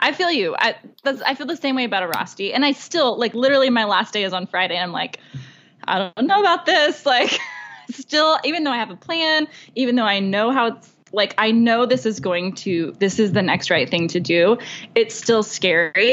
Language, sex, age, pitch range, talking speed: English, female, 20-39, 185-250 Hz, 235 wpm